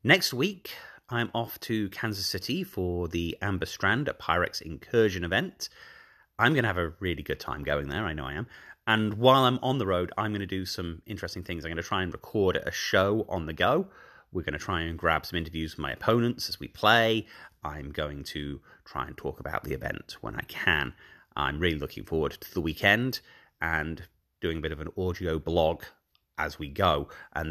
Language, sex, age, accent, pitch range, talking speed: English, male, 30-49, British, 85-105 Hz, 215 wpm